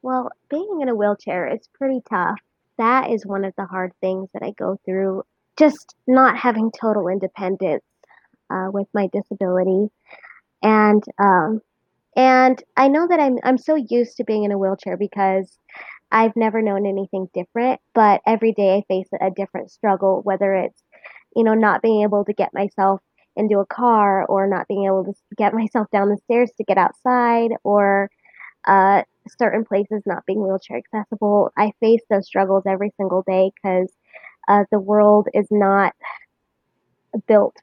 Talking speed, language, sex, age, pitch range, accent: 165 wpm, English, female, 20-39, 195-225 Hz, American